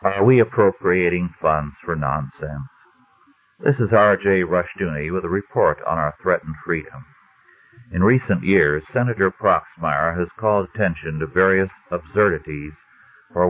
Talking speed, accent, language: 130 wpm, American, English